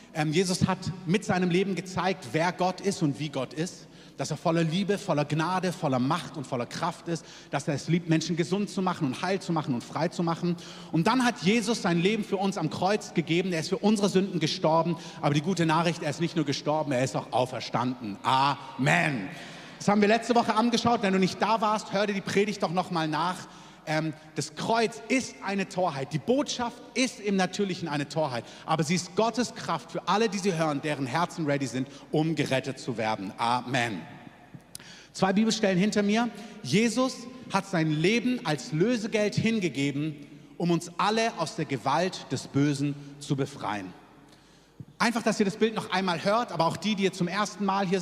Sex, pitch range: male, 150-205 Hz